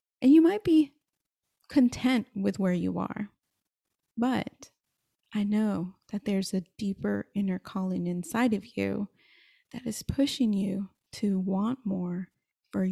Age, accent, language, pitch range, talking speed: 30-49, American, English, 185-230 Hz, 135 wpm